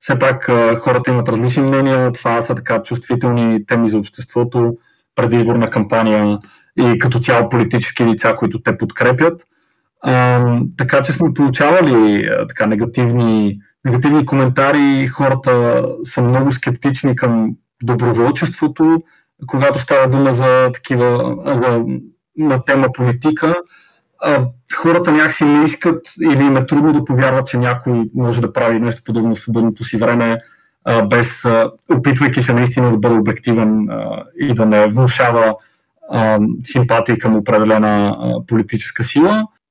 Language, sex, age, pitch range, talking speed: Bulgarian, male, 30-49, 115-135 Hz, 125 wpm